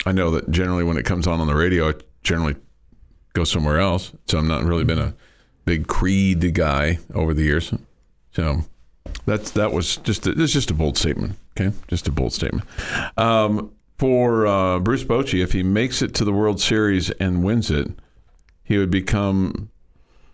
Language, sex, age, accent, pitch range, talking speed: English, male, 50-69, American, 75-95 Hz, 185 wpm